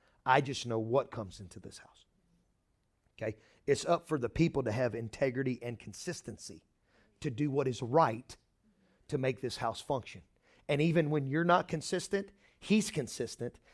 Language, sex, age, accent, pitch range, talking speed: English, male, 40-59, American, 135-190 Hz, 160 wpm